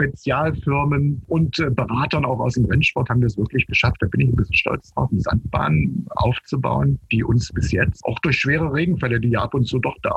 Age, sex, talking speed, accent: 50-69, male, 215 wpm, German